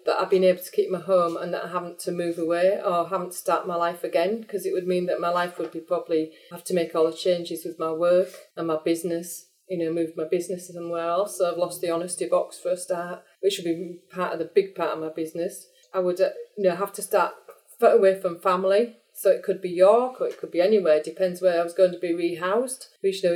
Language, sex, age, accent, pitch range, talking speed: English, female, 30-49, British, 170-195 Hz, 260 wpm